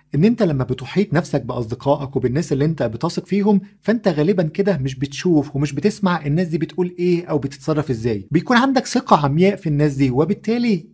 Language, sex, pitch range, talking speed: Arabic, male, 140-190 Hz, 180 wpm